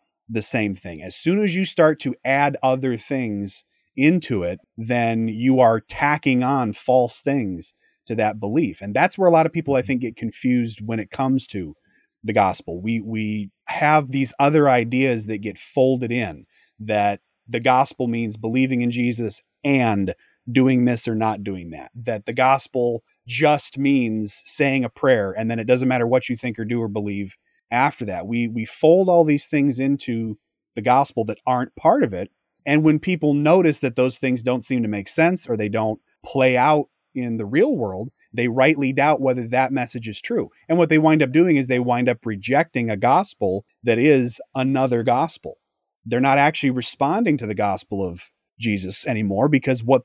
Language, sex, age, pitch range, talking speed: English, male, 30-49, 110-140 Hz, 190 wpm